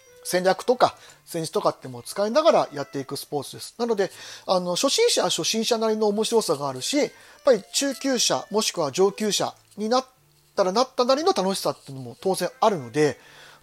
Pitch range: 145-210 Hz